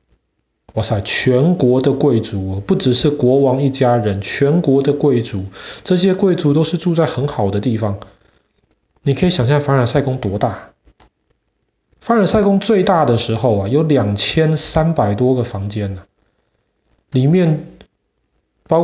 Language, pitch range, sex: Chinese, 110-145 Hz, male